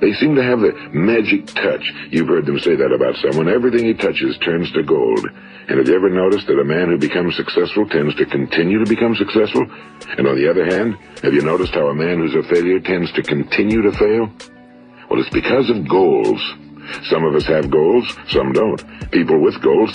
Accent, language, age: American, English, 60-79